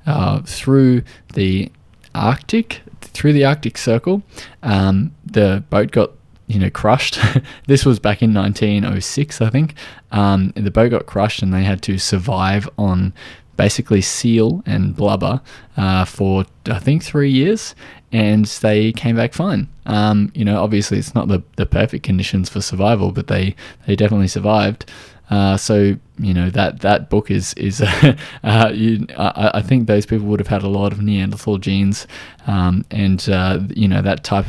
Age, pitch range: 20-39, 100-120 Hz